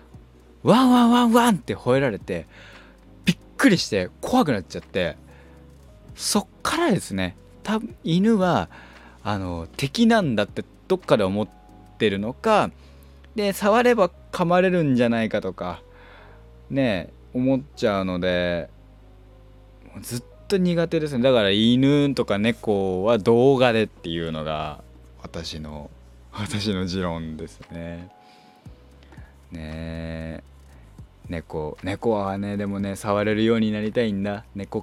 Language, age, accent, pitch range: Japanese, 20-39, native, 85-140 Hz